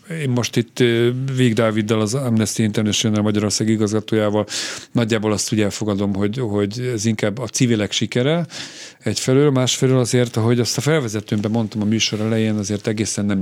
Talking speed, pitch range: 150 wpm, 100-120 Hz